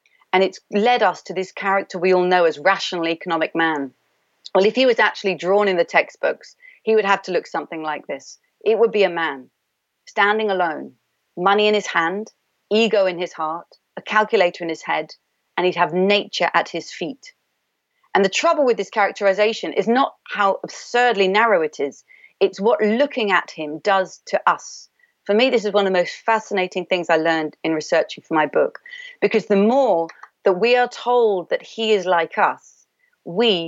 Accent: British